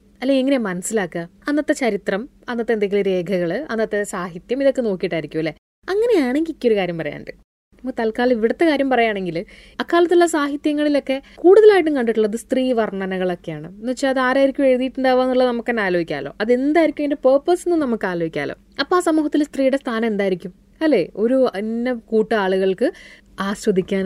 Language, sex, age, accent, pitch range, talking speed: Malayalam, female, 20-39, native, 200-310 Hz, 130 wpm